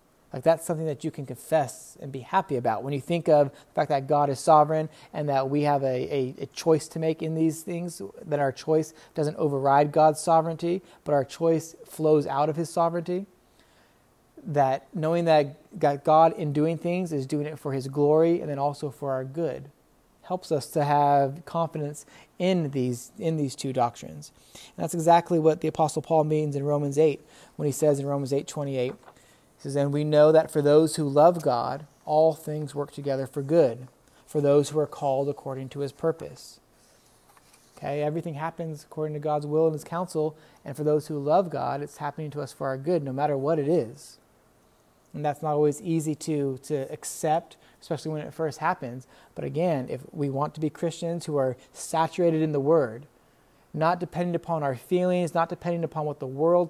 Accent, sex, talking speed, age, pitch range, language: American, male, 200 wpm, 30-49, 145-165 Hz, English